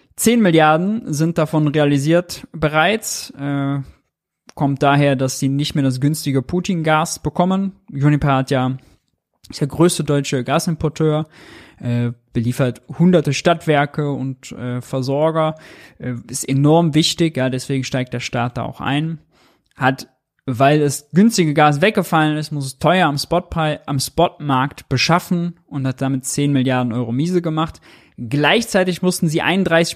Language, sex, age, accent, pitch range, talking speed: German, male, 20-39, German, 135-165 Hz, 140 wpm